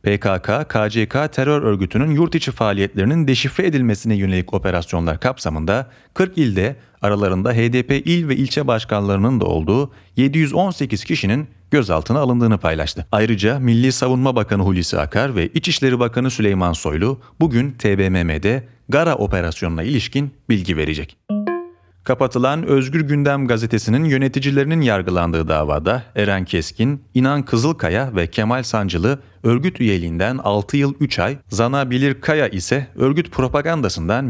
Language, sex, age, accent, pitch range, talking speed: Turkish, male, 40-59, native, 95-140 Hz, 120 wpm